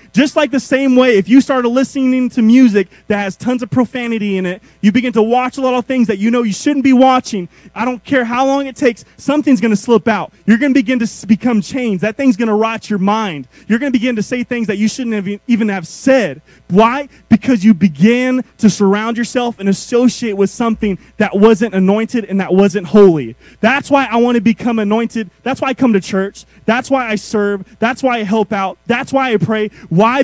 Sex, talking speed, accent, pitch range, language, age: male, 230 wpm, American, 175-235 Hz, English, 20-39